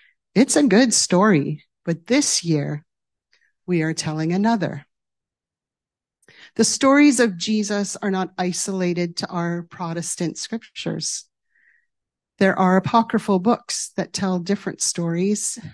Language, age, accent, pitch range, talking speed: English, 40-59, American, 170-215 Hz, 115 wpm